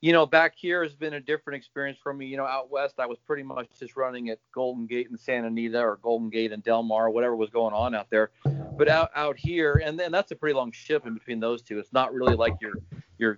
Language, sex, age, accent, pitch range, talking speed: English, male, 40-59, American, 120-145 Hz, 275 wpm